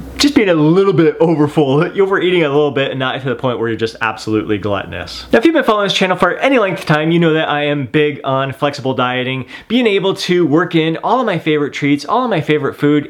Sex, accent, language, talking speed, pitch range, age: male, American, English, 260 wpm, 145-180 Hz, 30-49